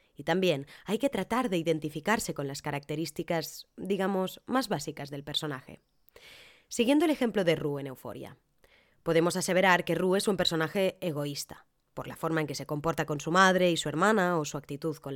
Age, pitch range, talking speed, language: 20-39, 155-215 Hz, 185 wpm, Spanish